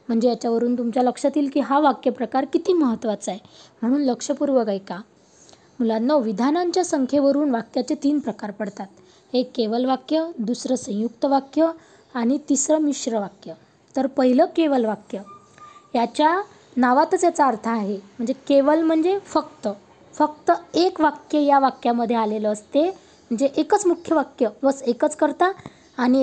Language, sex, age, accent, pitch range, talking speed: Marathi, female, 20-39, native, 230-300 Hz, 135 wpm